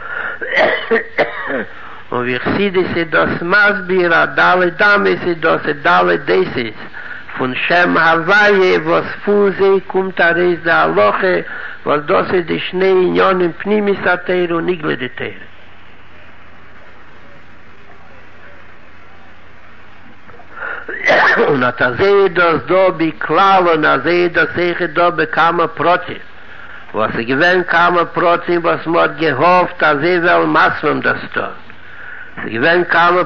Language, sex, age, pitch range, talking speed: Hebrew, male, 60-79, 155-180 Hz, 85 wpm